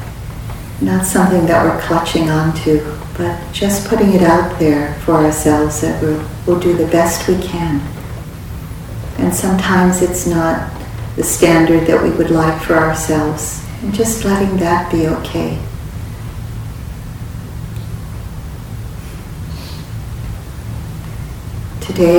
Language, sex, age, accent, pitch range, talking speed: English, female, 40-59, American, 115-165 Hz, 110 wpm